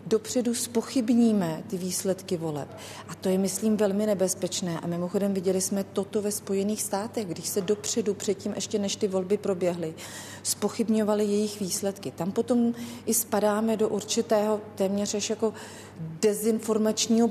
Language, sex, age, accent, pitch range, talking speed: Czech, female, 40-59, native, 175-215 Hz, 140 wpm